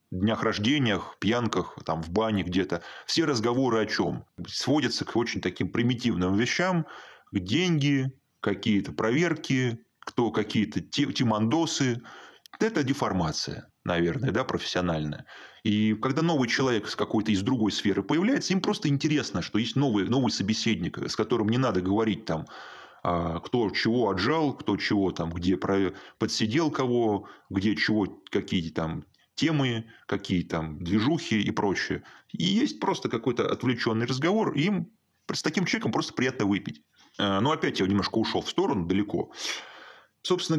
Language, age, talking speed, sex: Russian, 20-39, 135 wpm, male